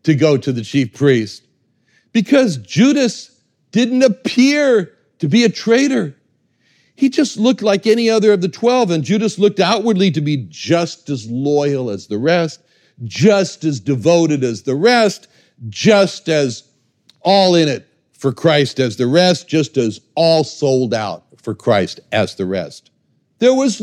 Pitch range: 125-200 Hz